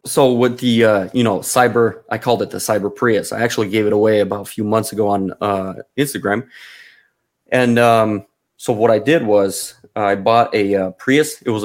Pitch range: 100-120 Hz